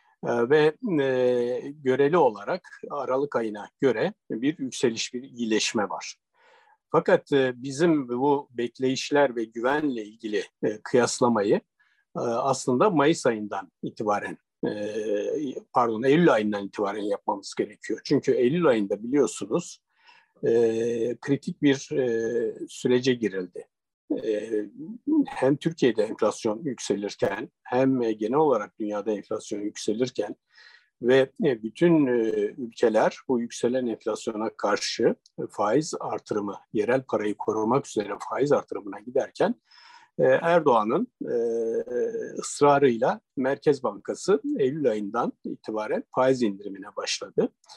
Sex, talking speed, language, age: male, 90 wpm, Turkish, 60-79